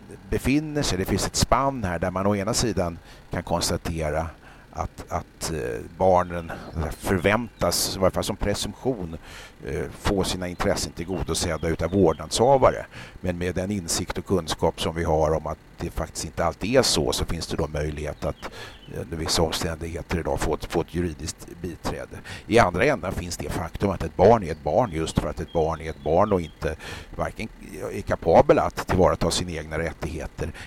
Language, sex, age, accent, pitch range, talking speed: Swedish, male, 50-69, native, 80-95 Hz, 180 wpm